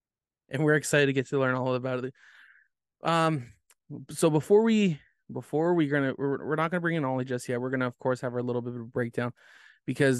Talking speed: 240 wpm